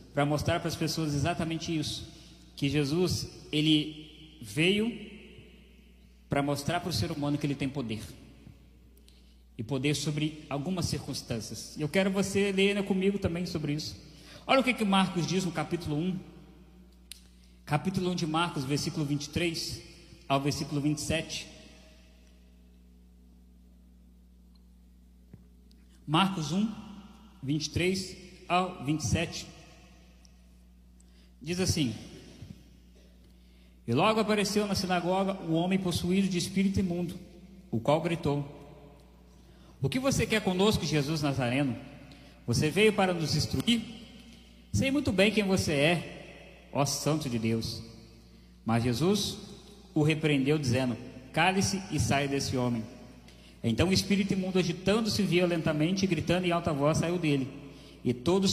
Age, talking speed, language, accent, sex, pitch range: 20-39, 125 wpm, Portuguese, Brazilian, male, 115-180 Hz